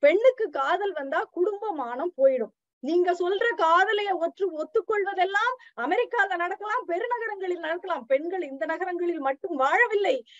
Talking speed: 100 wpm